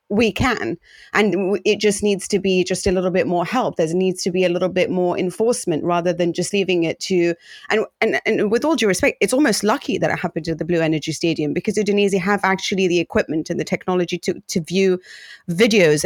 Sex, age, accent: female, 30-49, British